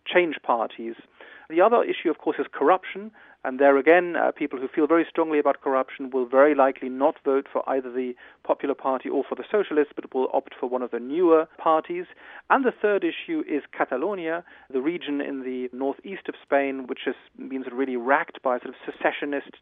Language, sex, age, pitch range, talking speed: English, male, 40-59, 130-160 Hz, 200 wpm